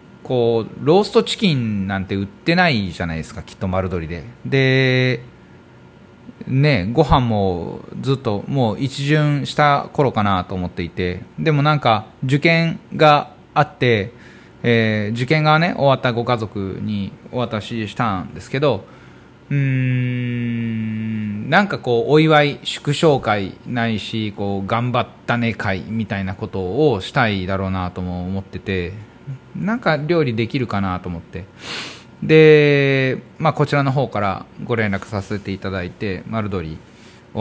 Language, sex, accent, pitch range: Japanese, male, native, 100-145 Hz